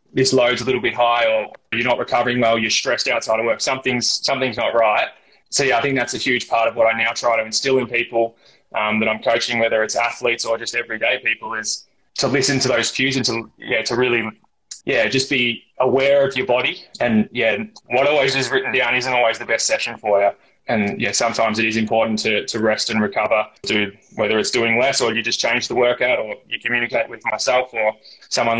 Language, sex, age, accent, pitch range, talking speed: English, male, 20-39, Australian, 110-125 Hz, 230 wpm